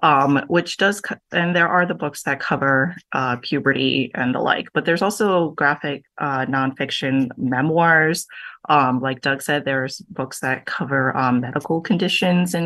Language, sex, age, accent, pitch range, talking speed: English, female, 30-49, American, 135-180 Hz, 165 wpm